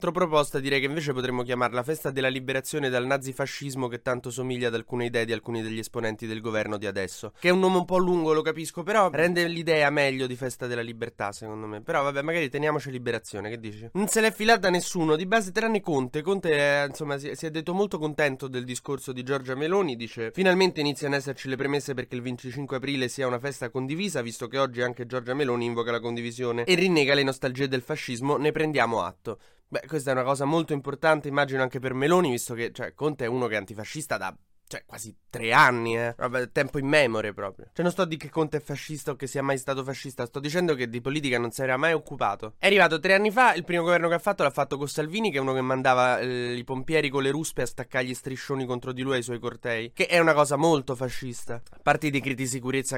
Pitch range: 125-160 Hz